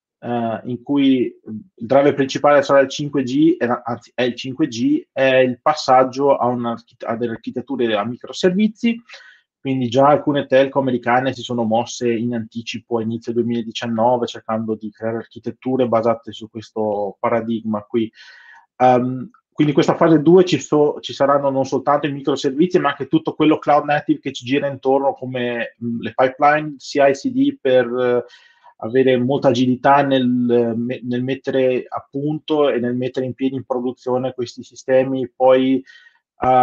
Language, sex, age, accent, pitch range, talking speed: Italian, male, 20-39, native, 125-150 Hz, 155 wpm